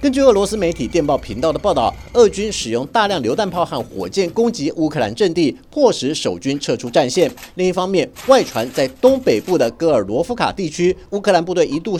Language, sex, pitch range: Chinese, male, 160-245 Hz